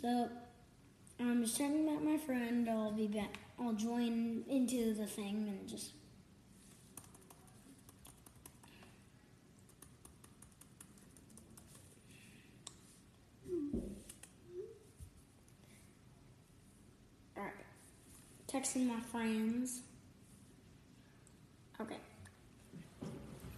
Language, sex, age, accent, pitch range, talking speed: English, female, 10-29, American, 210-255 Hz, 55 wpm